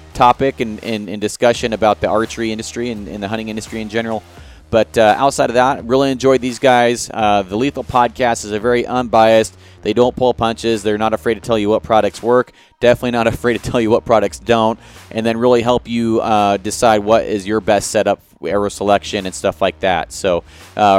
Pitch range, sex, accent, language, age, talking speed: 105-120 Hz, male, American, English, 30-49, 215 wpm